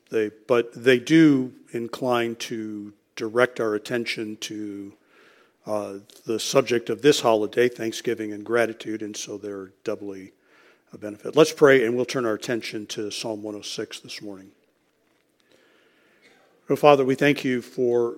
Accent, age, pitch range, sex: American, 50-69, 110-125 Hz, male